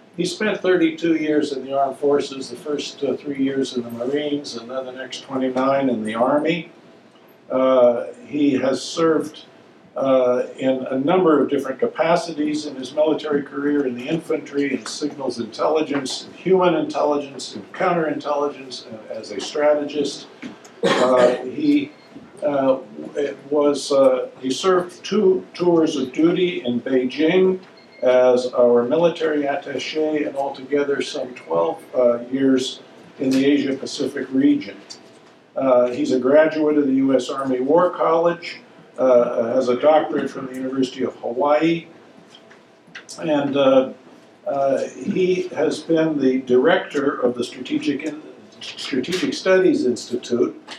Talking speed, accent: 135 wpm, American